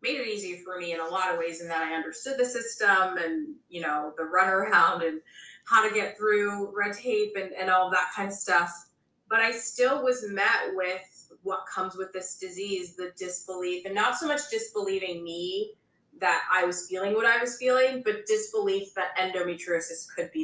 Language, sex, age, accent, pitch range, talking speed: English, female, 20-39, American, 175-235 Hz, 205 wpm